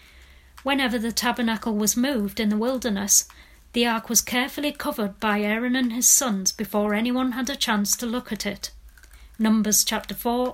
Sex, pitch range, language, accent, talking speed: female, 205-255 Hz, English, British, 170 wpm